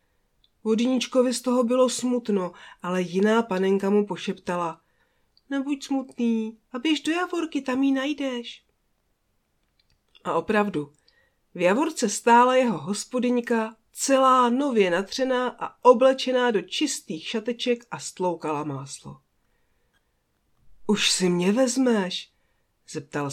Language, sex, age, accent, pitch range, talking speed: Czech, female, 40-59, native, 180-270 Hz, 110 wpm